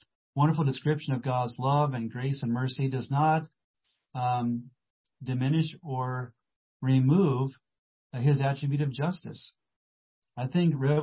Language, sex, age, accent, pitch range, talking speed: English, male, 40-59, American, 125-145 Hz, 115 wpm